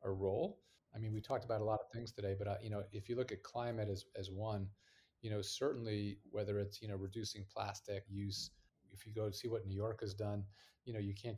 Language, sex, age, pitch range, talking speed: English, male, 30-49, 100-115 Hz, 255 wpm